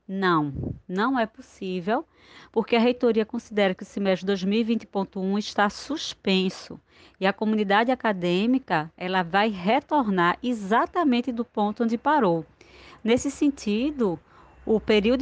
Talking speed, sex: 115 wpm, female